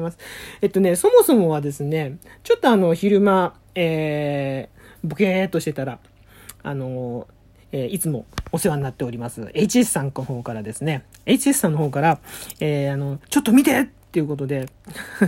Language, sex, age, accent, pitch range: Japanese, male, 40-59, native, 145-225 Hz